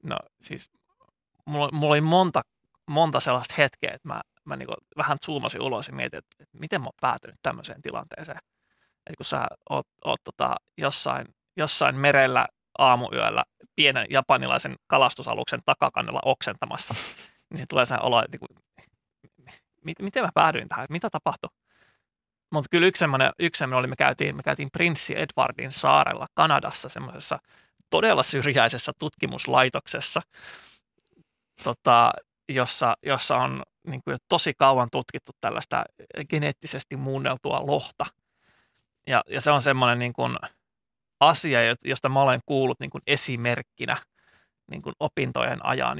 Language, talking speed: Finnish, 140 wpm